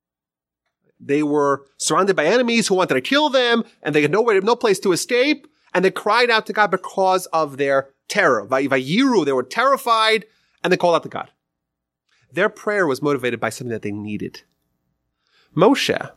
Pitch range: 140-220 Hz